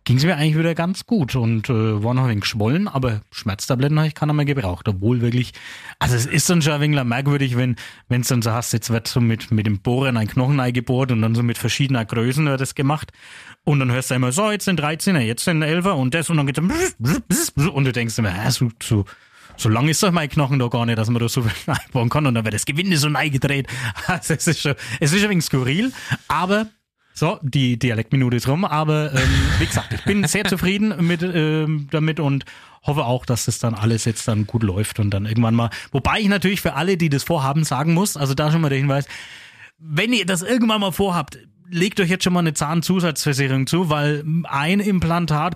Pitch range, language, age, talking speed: 120-165 Hz, German, 30-49, 235 wpm